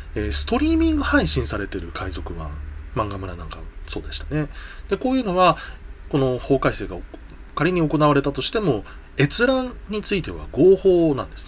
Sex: male